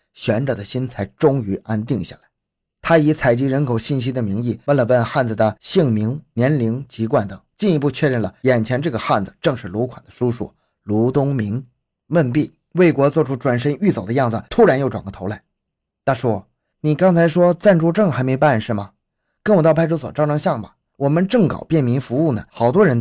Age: 20-39